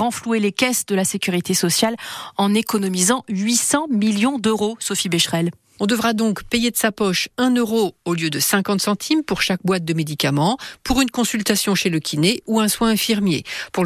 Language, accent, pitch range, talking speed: French, French, 180-230 Hz, 190 wpm